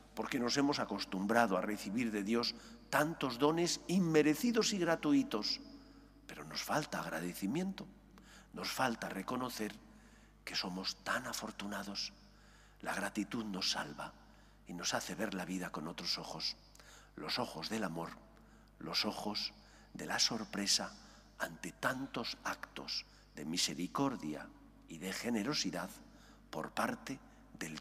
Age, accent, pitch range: 50-69, Spanish, 95-150 Hz